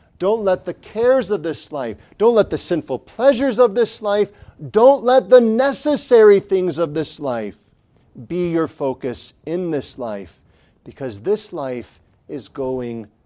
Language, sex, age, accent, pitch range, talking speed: English, male, 40-59, American, 120-180 Hz, 155 wpm